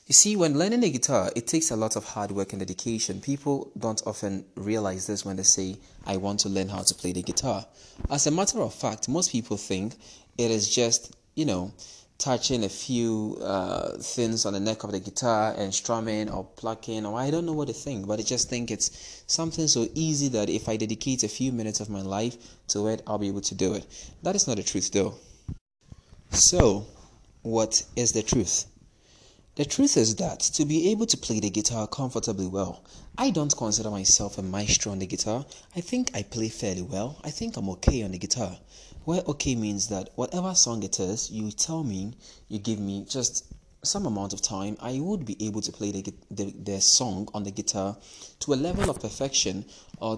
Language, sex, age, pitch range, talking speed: English, male, 20-39, 100-125 Hz, 210 wpm